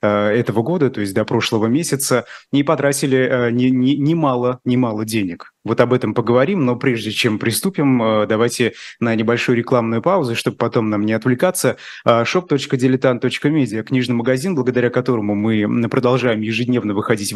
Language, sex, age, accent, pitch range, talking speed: Russian, male, 20-39, native, 115-140 Hz, 145 wpm